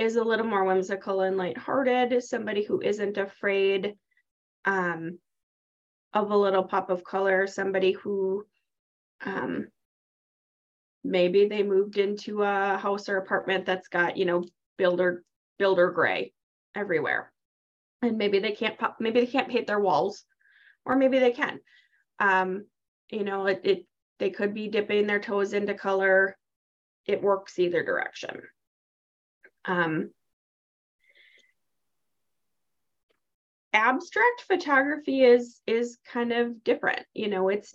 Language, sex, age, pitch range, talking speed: English, female, 20-39, 190-225 Hz, 130 wpm